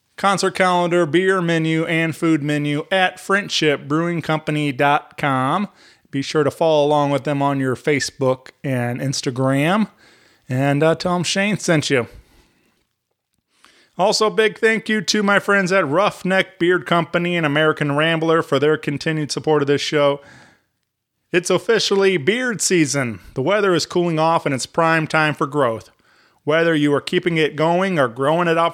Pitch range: 145-175 Hz